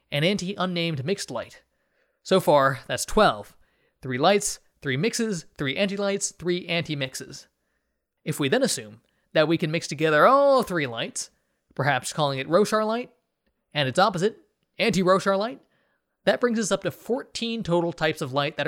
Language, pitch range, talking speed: English, 145-190 Hz, 155 wpm